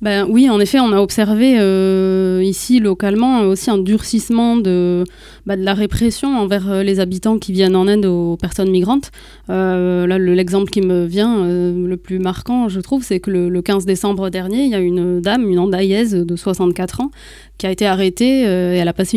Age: 20-39